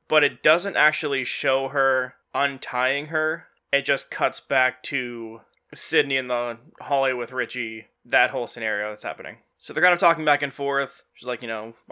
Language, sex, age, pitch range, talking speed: English, male, 20-39, 130-150 Hz, 180 wpm